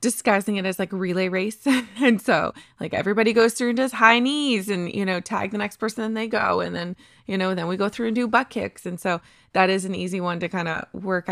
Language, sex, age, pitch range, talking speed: English, female, 20-39, 175-220 Hz, 265 wpm